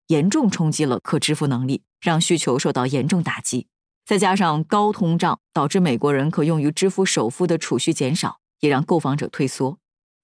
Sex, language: female, Chinese